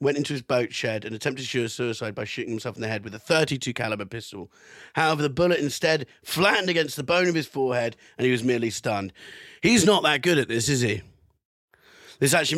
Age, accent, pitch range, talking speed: 30-49, British, 110-145 Hz, 230 wpm